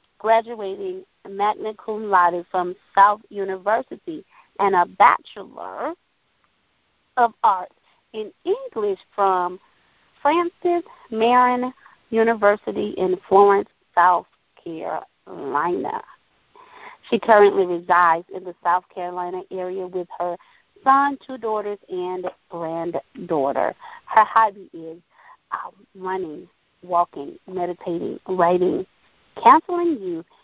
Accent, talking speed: American, 95 wpm